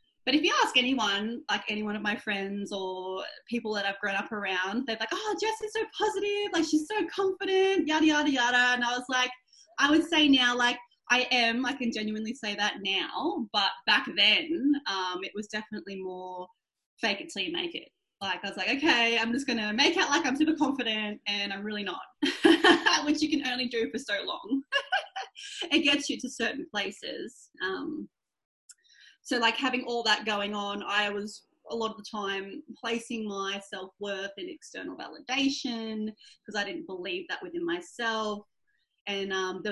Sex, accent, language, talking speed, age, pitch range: female, Australian, English, 190 wpm, 20-39, 205-305 Hz